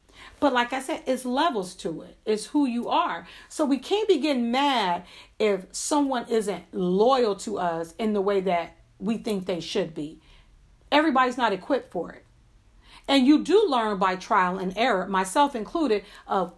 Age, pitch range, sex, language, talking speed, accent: 50-69, 185-250 Hz, female, English, 175 wpm, American